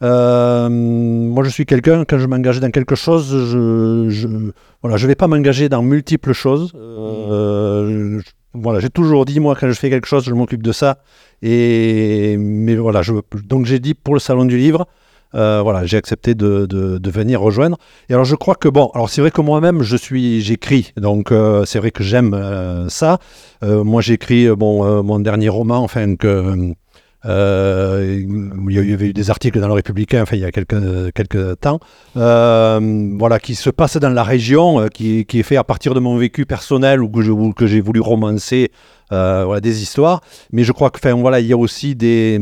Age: 50-69